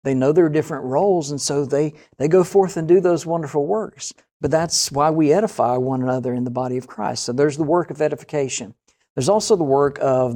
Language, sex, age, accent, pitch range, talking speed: English, male, 50-69, American, 125-155 Hz, 230 wpm